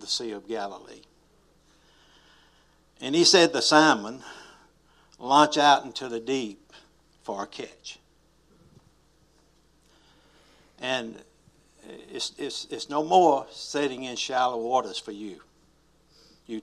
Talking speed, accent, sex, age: 110 wpm, American, male, 60-79